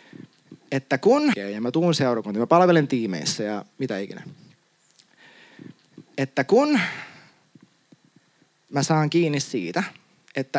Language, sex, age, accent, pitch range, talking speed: Finnish, male, 20-39, native, 145-195 Hz, 110 wpm